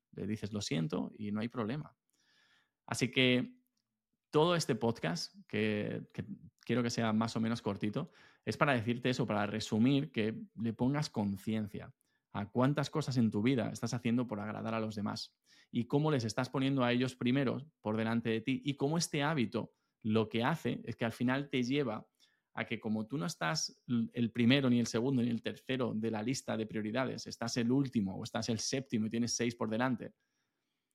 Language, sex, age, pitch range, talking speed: Spanish, male, 20-39, 110-130 Hz, 195 wpm